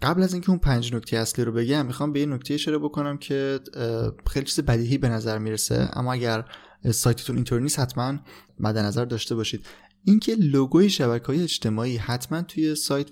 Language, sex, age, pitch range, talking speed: Persian, male, 20-39, 115-145 Hz, 175 wpm